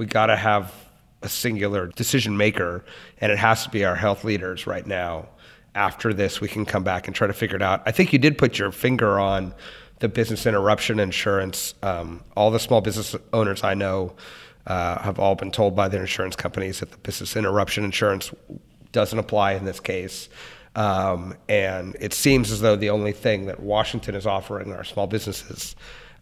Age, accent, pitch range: 30-49, American, 95-110 Hz